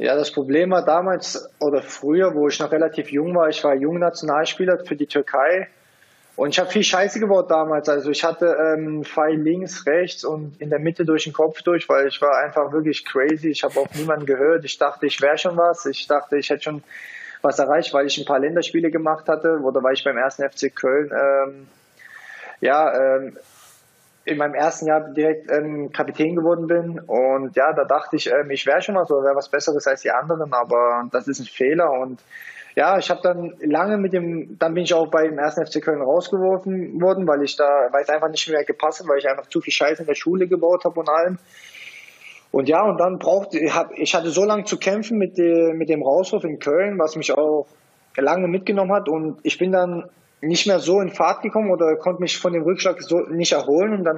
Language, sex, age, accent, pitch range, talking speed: German, male, 20-39, German, 145-175 Hz, 225 wpm